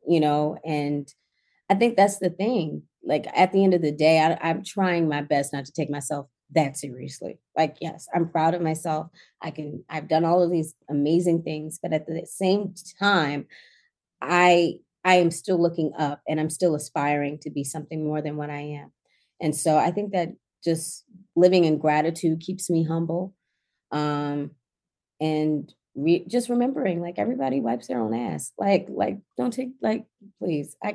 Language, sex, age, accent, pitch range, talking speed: English, female, 30-49, American, 145-170 Hz, 180 wpm